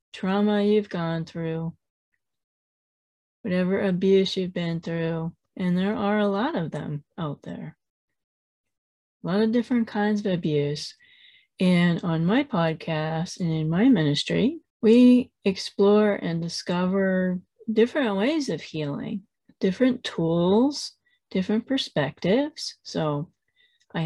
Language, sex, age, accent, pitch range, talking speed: English, female, 30-49, American, 170-220 Hz, 115 wpm